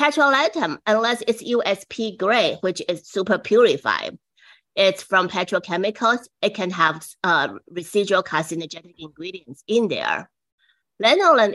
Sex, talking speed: female, 115 wpm